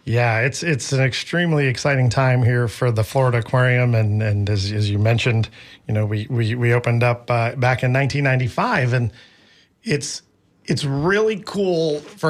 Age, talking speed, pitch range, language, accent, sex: 40-59, 170 wpm, 115-140 Hz, English, American, male